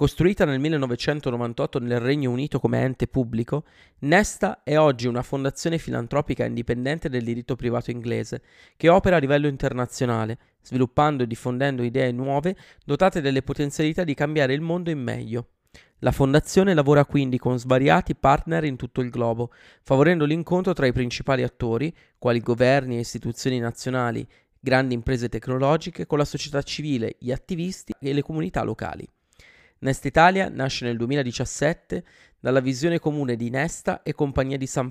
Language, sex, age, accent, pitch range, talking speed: Italian, male, 20-39, native, 120-150 Hz, 150 wpm